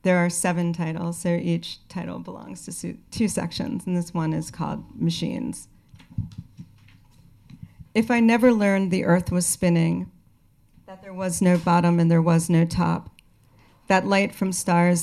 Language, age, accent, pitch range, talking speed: English, 40-59, American, 165-190 Hz, 155 wpm